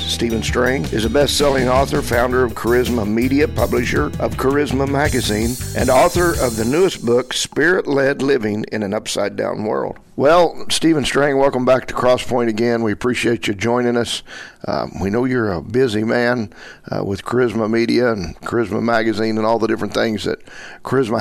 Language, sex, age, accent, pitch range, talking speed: English, male, 50-69, American, 110-130 Hz, 170 wpm